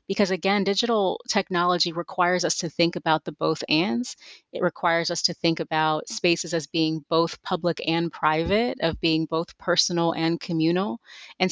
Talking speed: 165 wpm